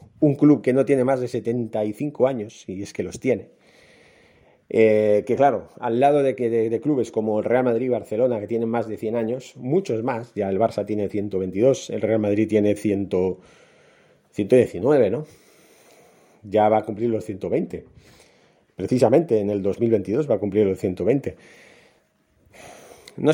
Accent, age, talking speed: Spanish, 30-49, 165 wpm